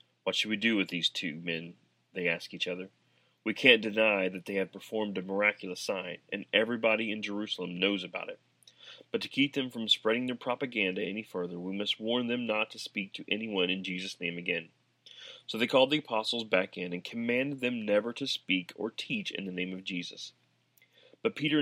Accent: American